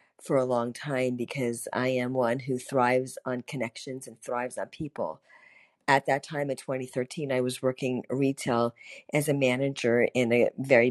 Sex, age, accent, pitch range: female, 50-69, American, 125-140 Hz